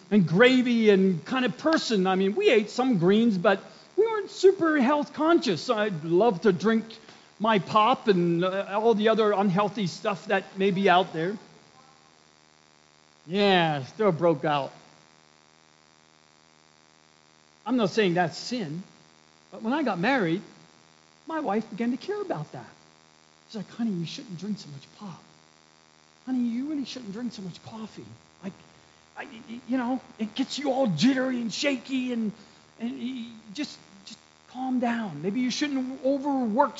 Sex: male